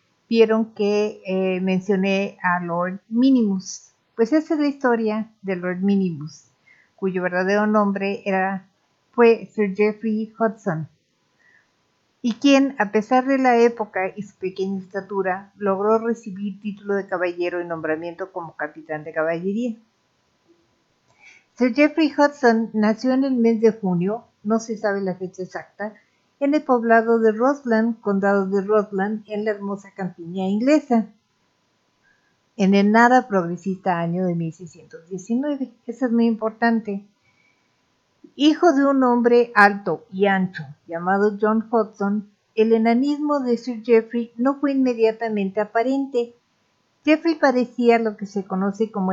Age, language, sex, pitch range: 50-69, Spanish, female, 195-235 Hz